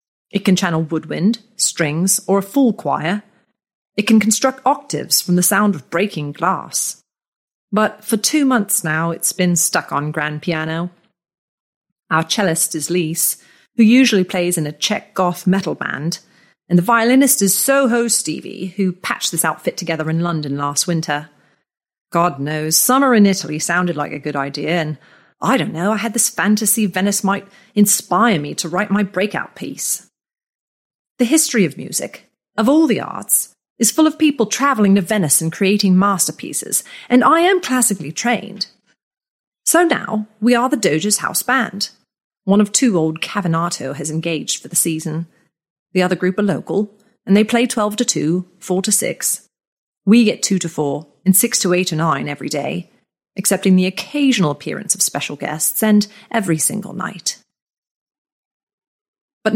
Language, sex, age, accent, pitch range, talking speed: English, female, 40-59, British, 170-225 Hz, 165 wpm